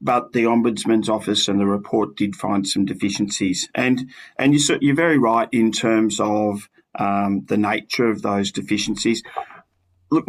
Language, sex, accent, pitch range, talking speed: English, male, Australian, 105-120 Hz, 155 wpm